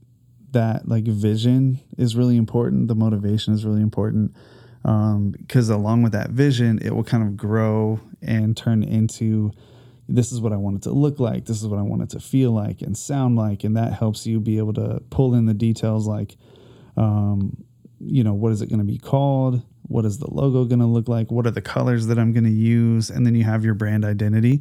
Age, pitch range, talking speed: 20-39, 110-120 Hz, 225 wpm